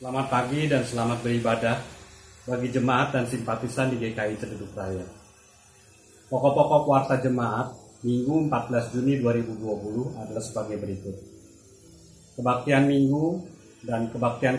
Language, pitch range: Indonesian, 110-135 Hz